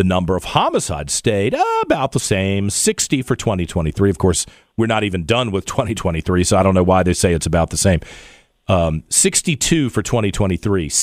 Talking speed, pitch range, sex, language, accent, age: 190 wpm, 95-125 Hz, male, English, American, 40-59